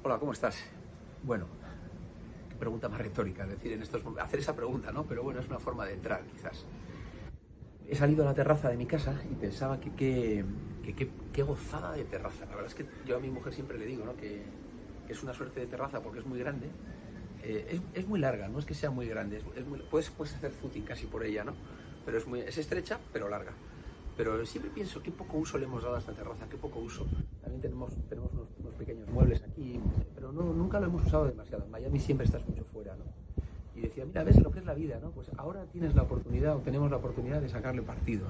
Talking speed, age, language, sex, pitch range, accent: 230 wpm, 40-59, Spanish, male, 105-145 Hz, Spanish